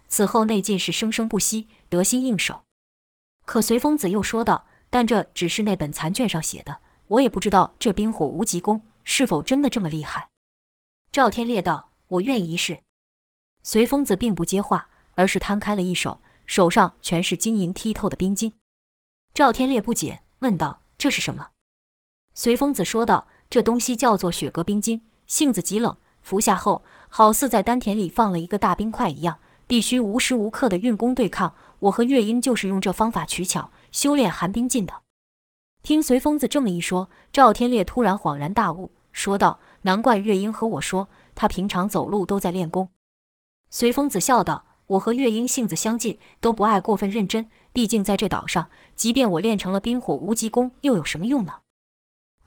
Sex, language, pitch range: female, Chinese, 180-235 Hz